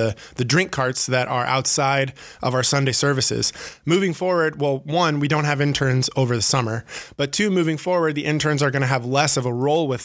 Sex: male